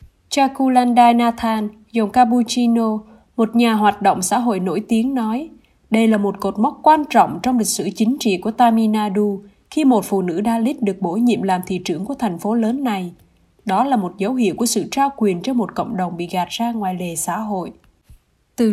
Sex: female